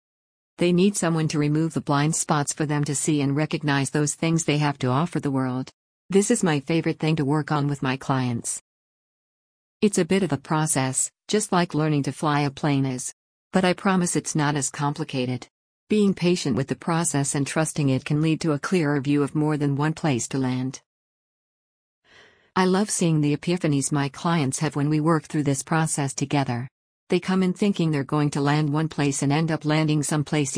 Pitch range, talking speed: 140-165 Hz, 210 wpm